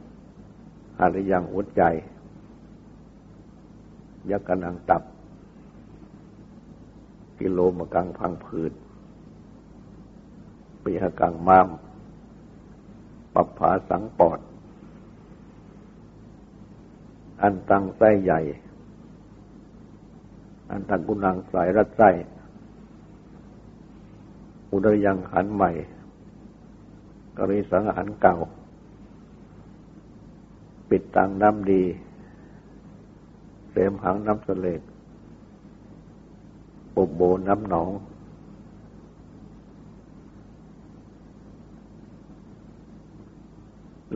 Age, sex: 60-79, male